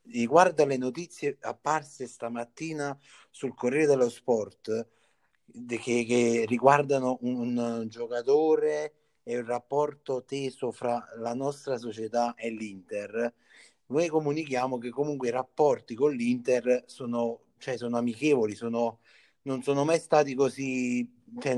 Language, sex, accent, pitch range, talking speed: Italian, male, native, 115-145 Hz, 115 wpm